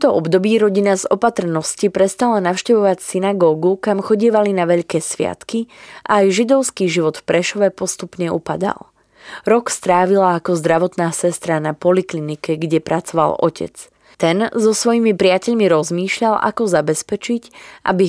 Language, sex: Slovak, female